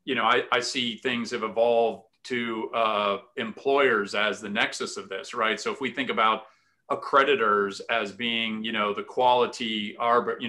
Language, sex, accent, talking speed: English, male, American, 170 wpm